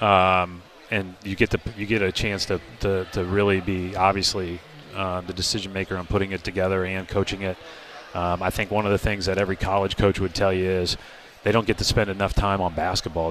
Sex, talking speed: male, 225 wpm